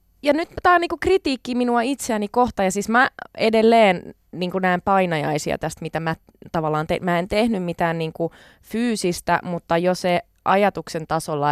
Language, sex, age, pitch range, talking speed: Finnish, female, 20-39, 165-225 Hz, 145 wpm